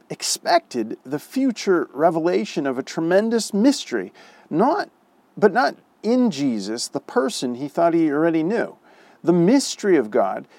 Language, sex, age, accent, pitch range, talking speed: English, male, 40-59, American, 150-240 Hz, 135 wpm